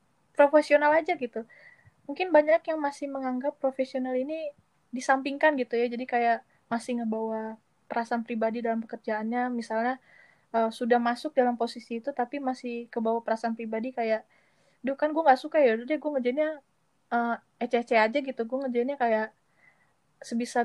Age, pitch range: 20-39, 230-275 Hz